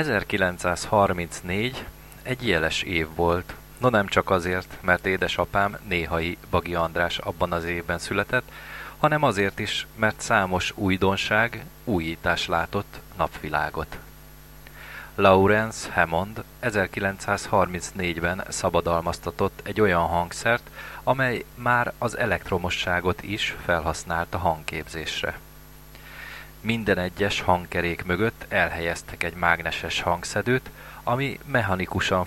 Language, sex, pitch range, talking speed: Hungarian, male, 85-110 Hz, 95 wpm